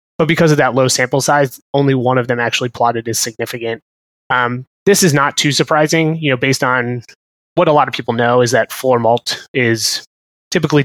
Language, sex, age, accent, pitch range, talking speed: English, male, 20-39, American, 125-145 Hz, 205 wpm